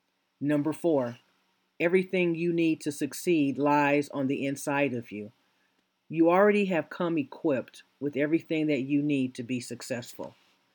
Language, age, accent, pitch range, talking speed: English, 50-69, American, 120-155 Hz, 145 wpm